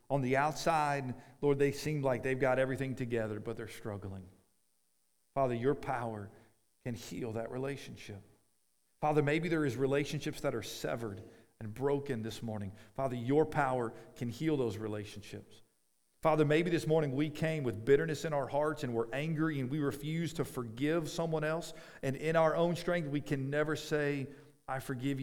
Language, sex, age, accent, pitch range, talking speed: English, male, 40-59, American, 105-140 Hz, 170 wpm